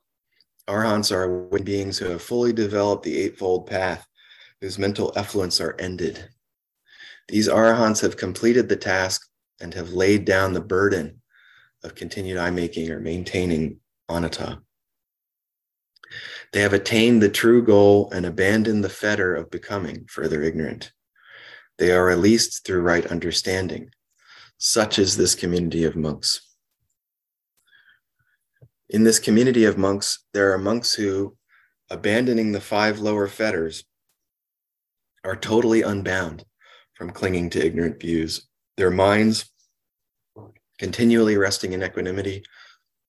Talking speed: 120 wpm